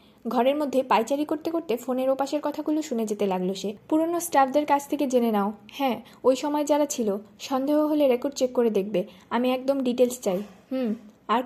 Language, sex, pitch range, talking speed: Bengali, female, 215-285 Hz, 185 wpm